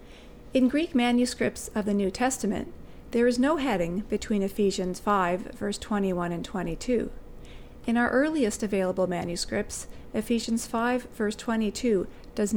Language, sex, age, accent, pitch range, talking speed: English, female, 40-59, American, 195-245 Hz, 135 wpm